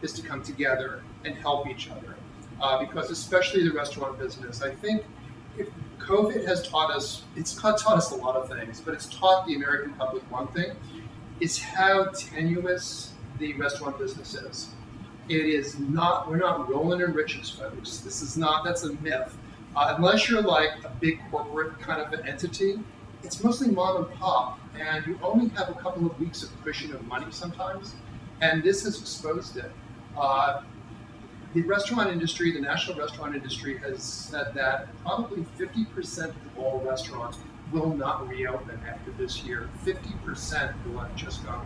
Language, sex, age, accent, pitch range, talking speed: English, male, 40-59, American, 125-175 Hz, 175 wpm